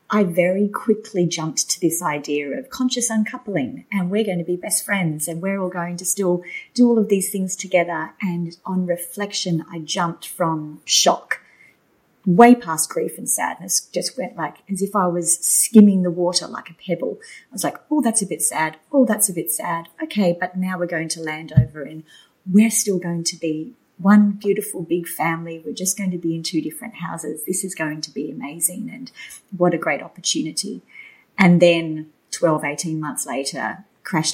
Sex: female